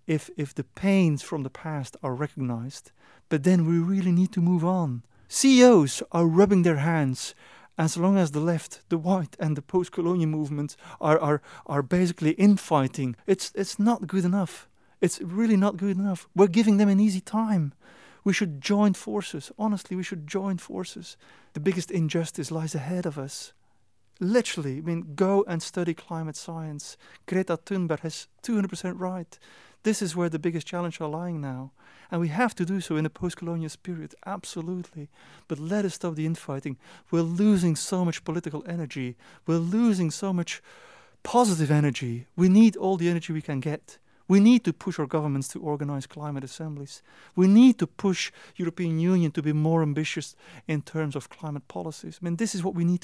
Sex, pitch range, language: male, 155-190 Hz, Dutch